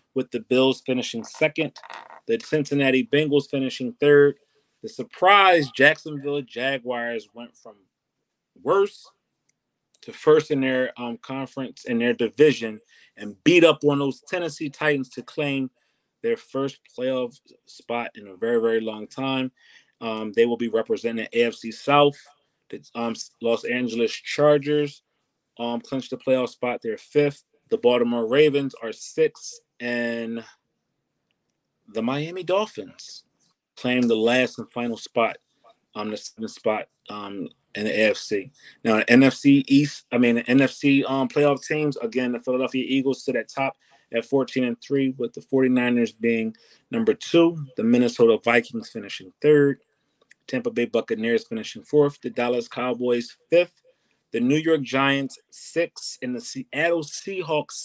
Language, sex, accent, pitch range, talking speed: English, male, American, 120-150 Hz, 145 wpm